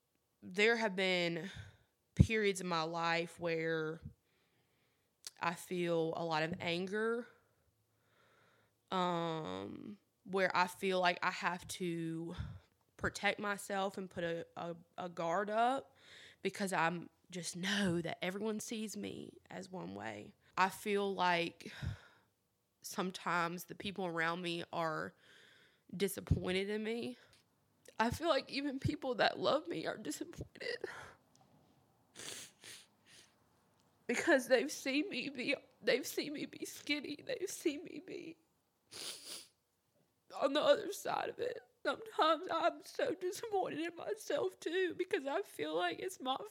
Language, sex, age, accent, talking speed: English, female, 20-39, American, 125 wpm